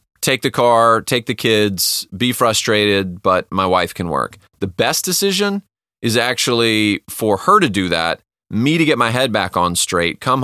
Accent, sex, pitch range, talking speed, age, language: American, male, 100-125 Hz, 185 wpm, 30-49, English